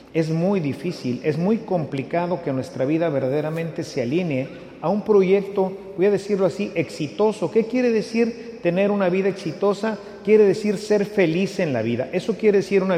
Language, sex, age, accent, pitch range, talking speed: English, male, 40-59, Mexican, 145-200 Hz, 175 wpm